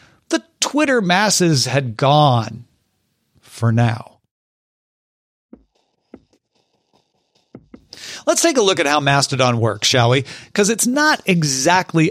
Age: 40-59